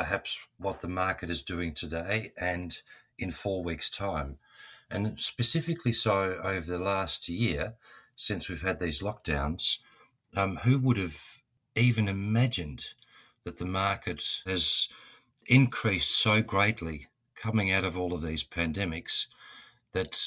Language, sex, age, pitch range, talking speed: English, male, 50-69, 85-105 Hz, 135 wpm